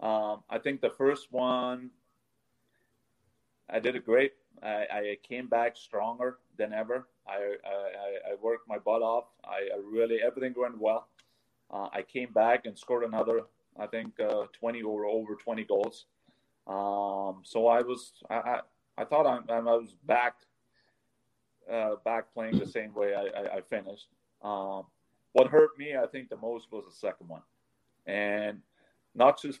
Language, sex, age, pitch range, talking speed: English, male, 30-49, 100-120 Hz, 165 wpm